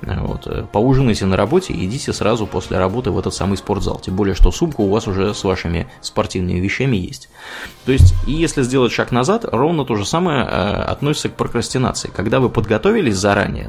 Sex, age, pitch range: male, 20-39, 95-120 Hz